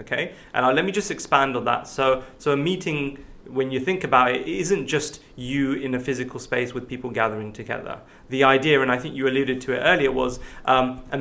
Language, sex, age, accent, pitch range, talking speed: English, male, 30-49, British, 125-150 Hz, 230 wpm